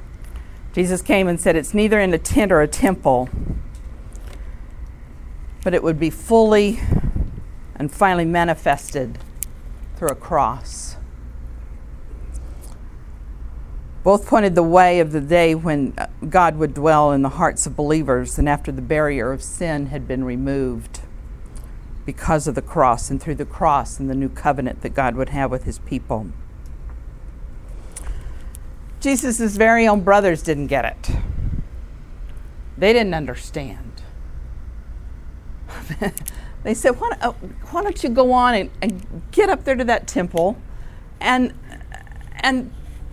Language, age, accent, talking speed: English, 50-69, American, 130 wpm